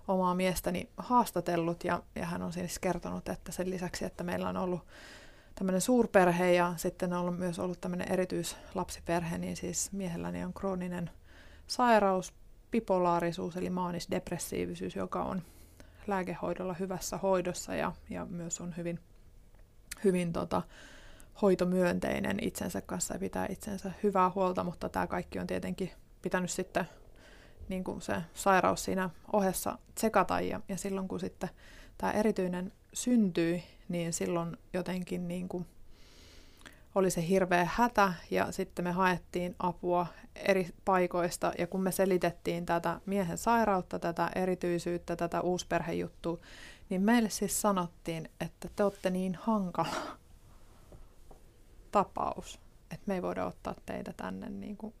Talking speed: 130 wpm